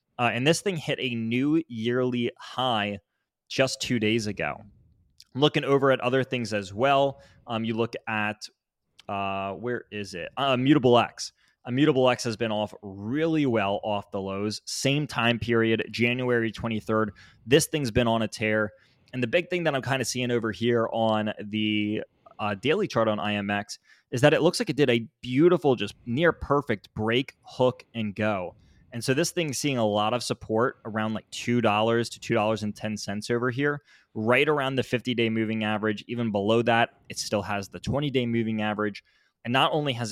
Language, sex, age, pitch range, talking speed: English, male, 20-39, 105-130 Hz, 180 wpm